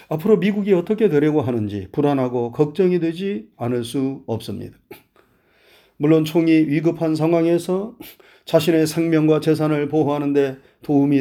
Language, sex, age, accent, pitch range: Korean, male, 40-59, native, 130-180 Hz